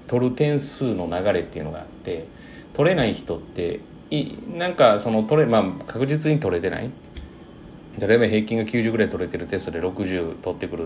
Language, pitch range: Japanese, 90-125 Hz